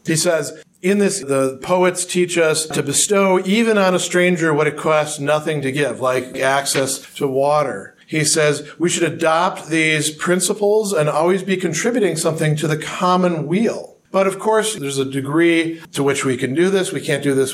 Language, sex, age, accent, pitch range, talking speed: English, male, 50-69, American, 150-180 Hz, 190 wpm